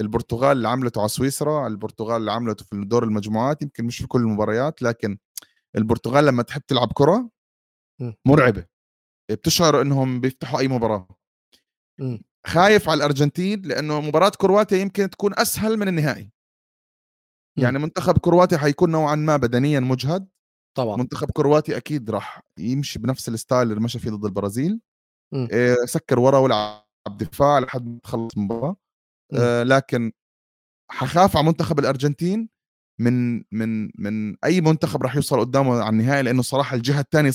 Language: Arabic